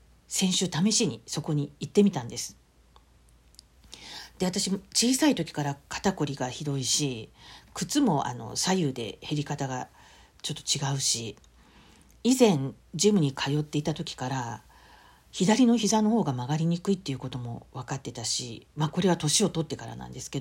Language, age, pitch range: Japanese, 50-69, 135-195 Hz